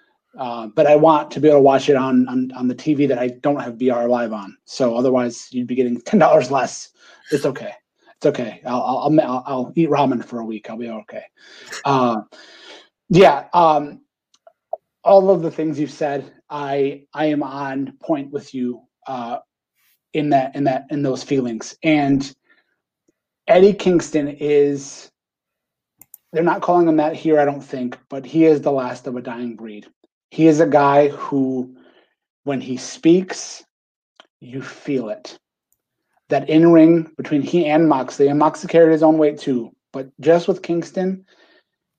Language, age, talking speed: English, 30-49, 170 wpm